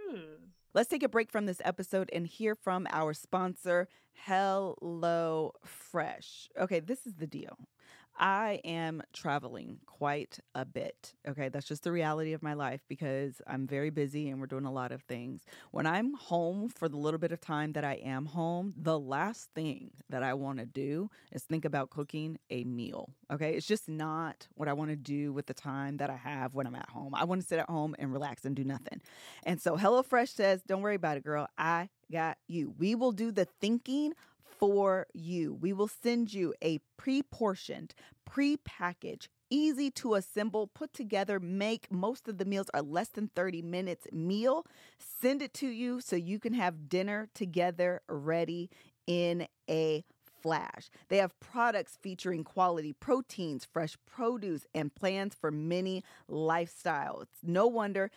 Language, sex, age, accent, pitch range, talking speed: English, female, 20-39, American, 150-200 Hz, 175 wpm